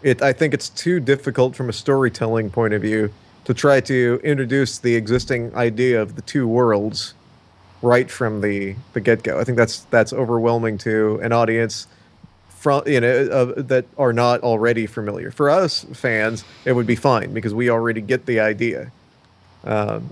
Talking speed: 180 wpm